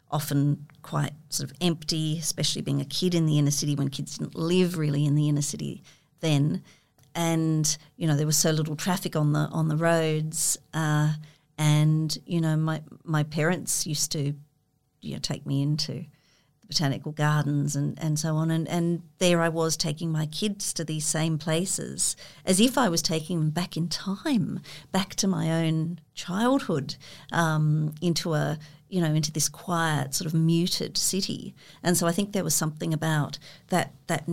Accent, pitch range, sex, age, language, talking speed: Australian, 150-170 Hz, female, 50-69, English, 185 wpm